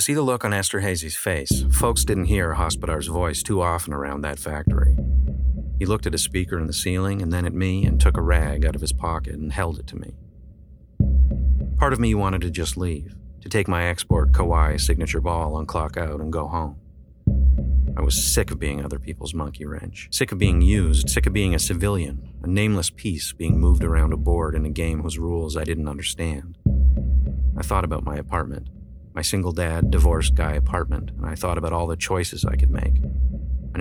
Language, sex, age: English, male, 40-59